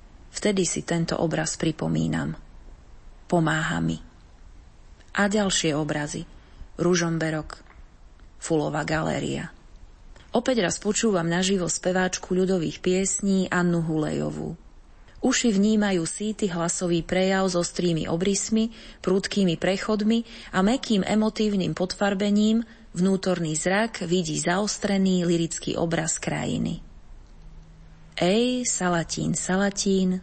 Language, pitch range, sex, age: Slovak, 165-195 Hz, female, 30-49